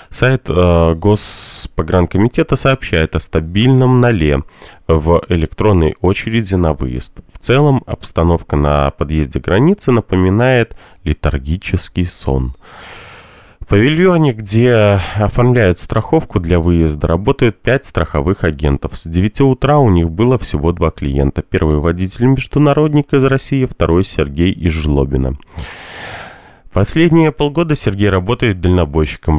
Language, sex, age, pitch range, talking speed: Russian, male, 20-39, 80-120 Hz, 115 wpm